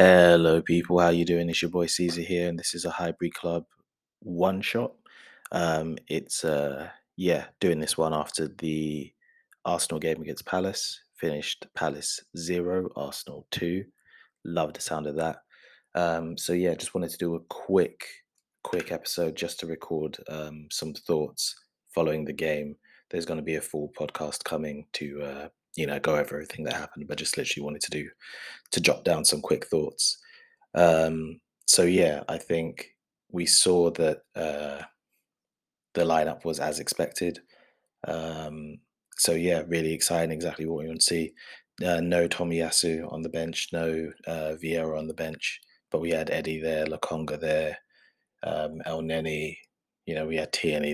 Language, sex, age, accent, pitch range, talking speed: English, male, 20-39, British, 75-85 Hz, 165 wpm